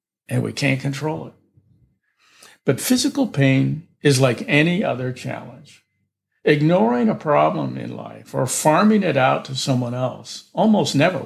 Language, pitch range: English, 130-180 Hz